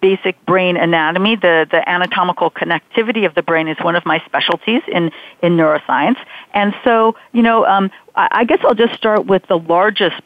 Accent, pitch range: American, 165-195 Hz